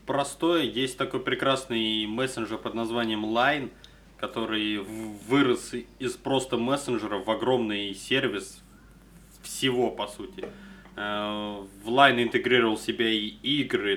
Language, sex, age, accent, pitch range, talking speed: Russian, male, 20-39, native, 105-130 Hz, 110 wpm